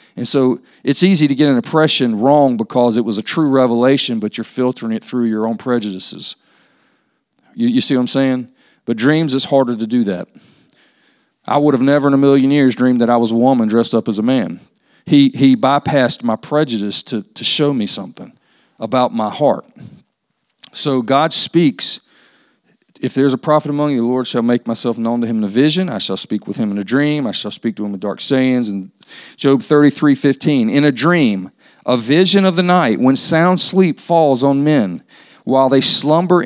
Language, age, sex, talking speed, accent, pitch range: English, 40-59, male, 210 wpm, American, 120-155 Hz